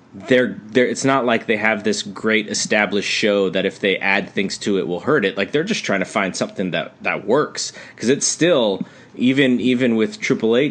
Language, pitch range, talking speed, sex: English, 95-125 Hz, 215 wpm, male